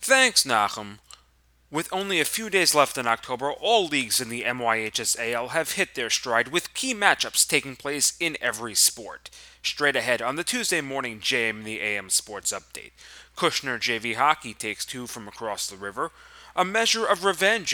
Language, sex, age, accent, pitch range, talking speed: English, male, 30-49, American, 115-170 Hz, 175 wpm